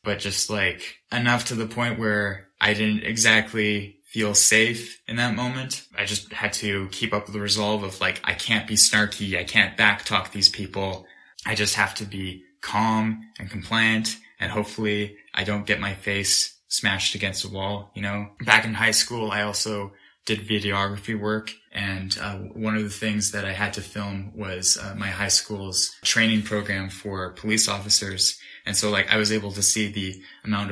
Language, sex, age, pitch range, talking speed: English, male, 20-39, 100-110 Hz, 190 wpm